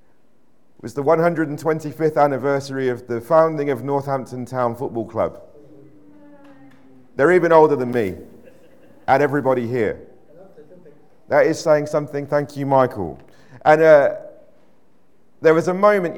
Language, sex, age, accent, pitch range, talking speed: English, male, 40-59, British, 125-155 Hz, 125 wpm